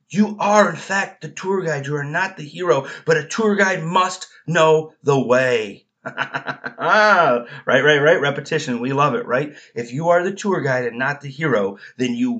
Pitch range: 120-170 Hz